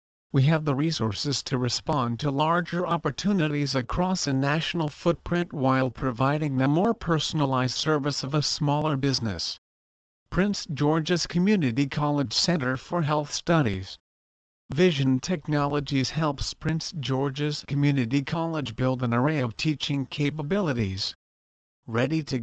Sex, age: male, 50-69